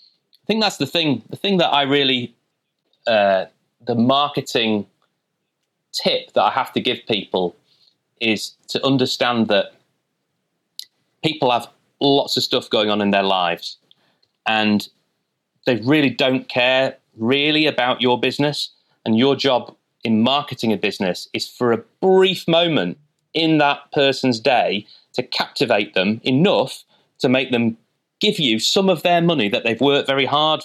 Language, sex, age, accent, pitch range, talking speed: English, male, 30-49, British, 110-145 Hz, 150 wpm